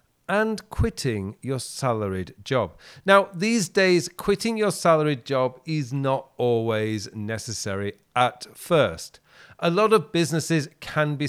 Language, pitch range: English, 125-165 Hz